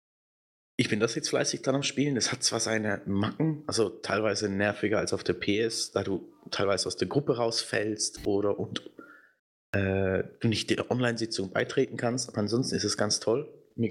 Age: 20-39